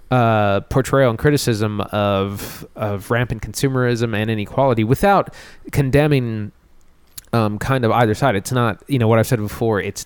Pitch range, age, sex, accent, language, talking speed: 95-120 Hz, 20-39, male, American, English, 155 wpm